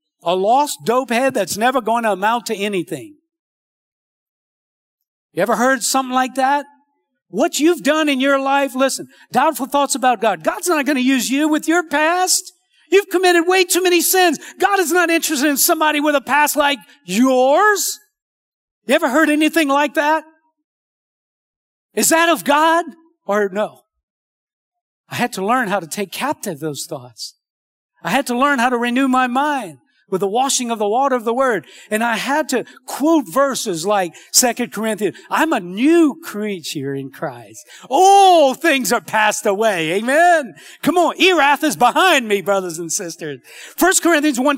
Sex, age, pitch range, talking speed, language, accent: male, 50-69, 225-315 Hz, 170 wpm, English, American